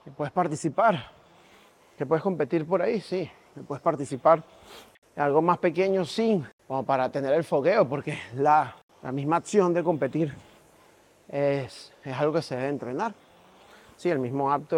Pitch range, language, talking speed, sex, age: 135-165 Hz, Spanish, 160 wpm, male, 30-49